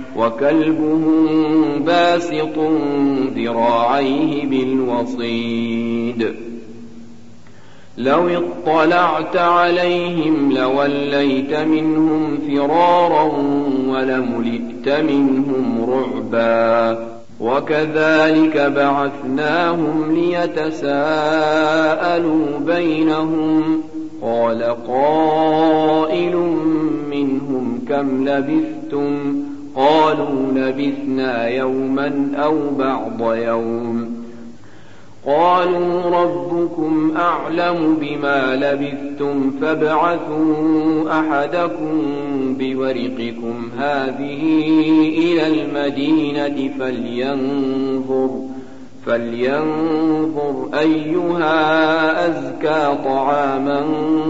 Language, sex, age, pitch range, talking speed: Arabic, male, 50-69, 130-155 Hz, 50 wpm